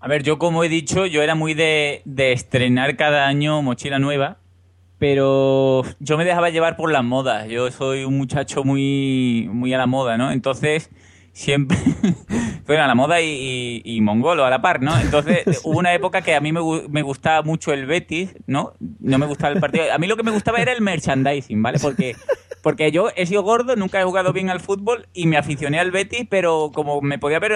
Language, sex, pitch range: Spanish, male, 140-190 Hz